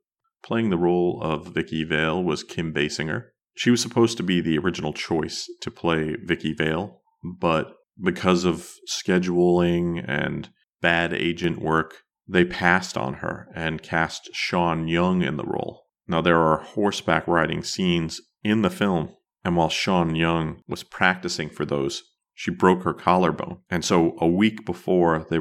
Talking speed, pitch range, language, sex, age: 160 wpm, 80-90 Hz, English, male, 40-59